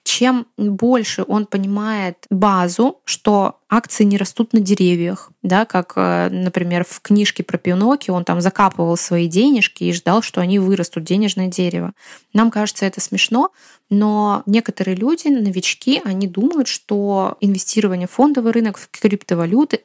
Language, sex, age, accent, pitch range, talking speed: Russian, female, 20-39, native, 185-235 Hz, 140 wpm